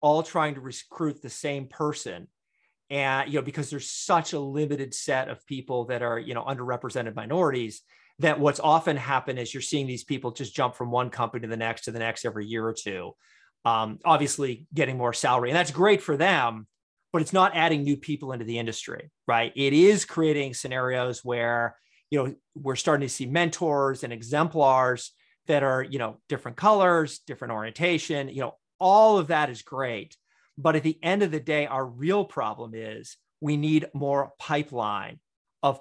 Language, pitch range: English, 125-155 Hz